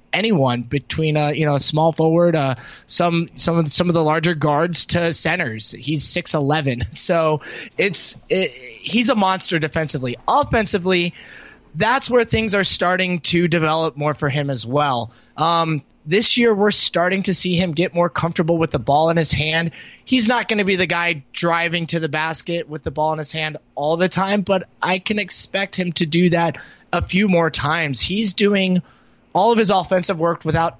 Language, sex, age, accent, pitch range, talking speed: English, male, 20-39, American, 145-180 Hz, 195 wpm